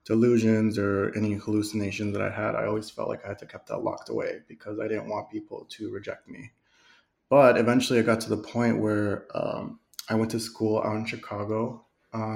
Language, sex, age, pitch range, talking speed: English, male, 20-39, 110-120 Hz, 205 wpm